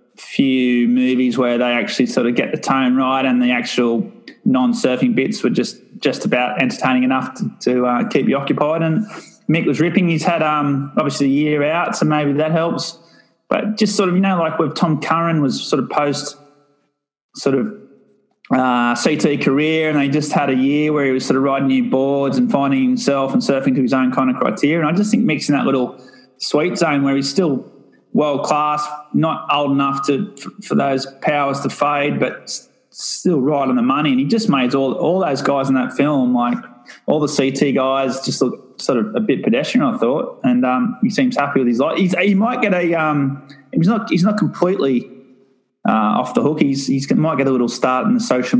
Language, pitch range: English, 130-170 Hz